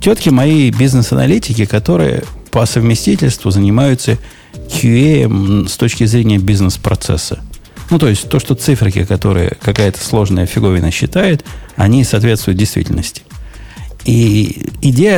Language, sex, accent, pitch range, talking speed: Russian, male, native, 100-130 Hz, 110 wpm